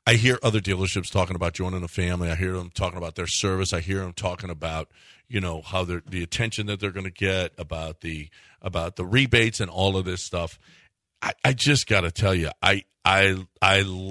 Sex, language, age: male, English, 40-59